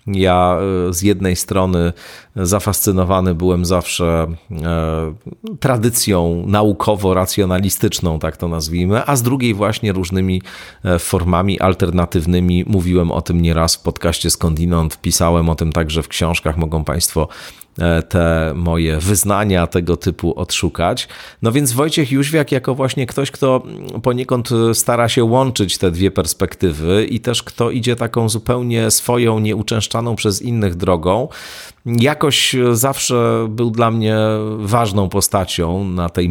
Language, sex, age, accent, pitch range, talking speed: Polish, male, 40-59, native, 90-110 Hz, 125 wpm